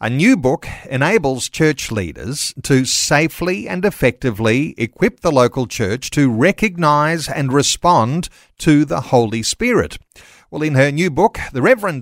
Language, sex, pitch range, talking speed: English, male, 120-175 Hz, 145 wpm